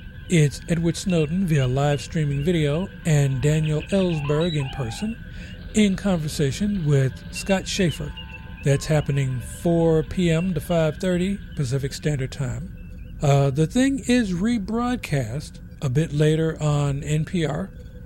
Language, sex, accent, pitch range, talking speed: English, male, American, 135-180 Hz, 120 wpm